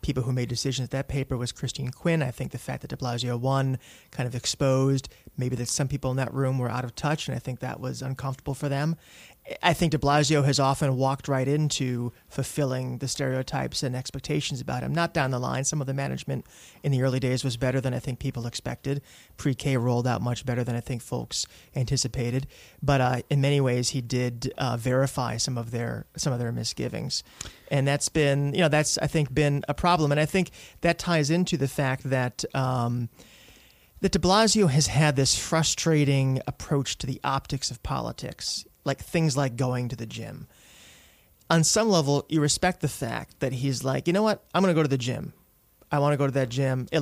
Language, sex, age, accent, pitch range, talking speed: English, male, 30-49, American, 125-145 Hz, 215 wpm